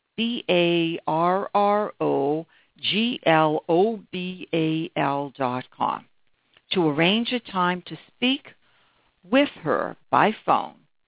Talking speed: 70 wpm